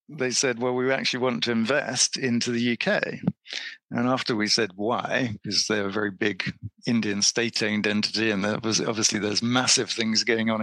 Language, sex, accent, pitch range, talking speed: English, male, British, 110-130 Hz, 180 wpm